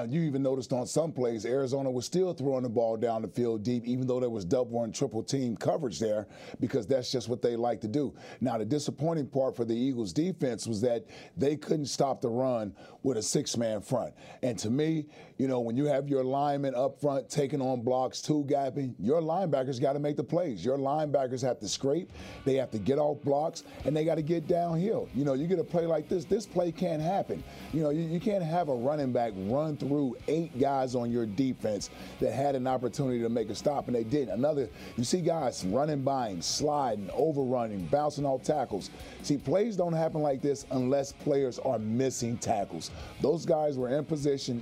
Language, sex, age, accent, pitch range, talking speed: English, male, 30-49, American, 125-150 Hz, 215 wpm